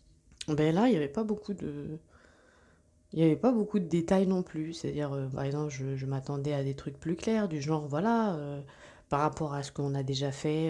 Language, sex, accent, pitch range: French, female, French, 140-155 Hz